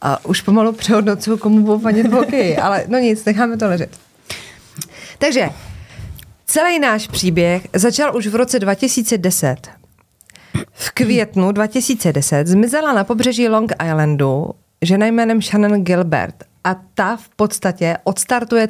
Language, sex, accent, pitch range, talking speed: Czech, female, native, 180-240 Hz, 130 wpm